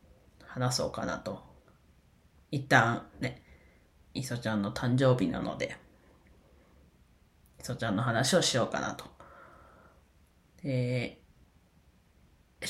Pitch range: 90-150 Hz